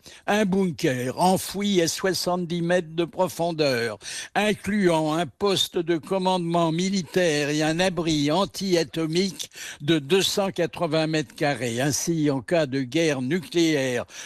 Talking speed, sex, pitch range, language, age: 120 wpm, male, 145-185 Hz, French, 70-89